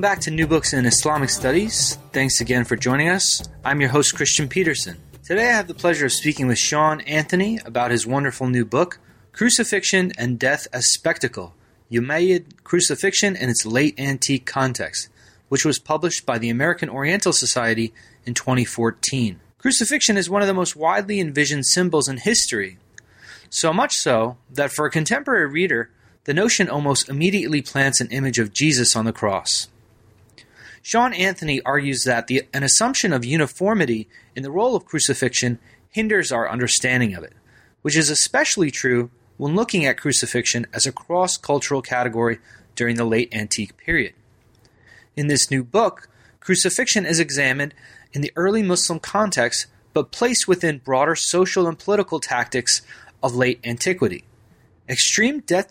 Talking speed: 160 wpm